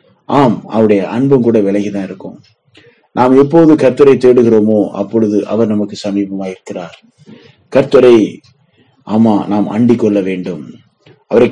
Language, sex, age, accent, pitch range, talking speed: Tamil, male, 30-49, native, 100-125 Hz, 105 wpm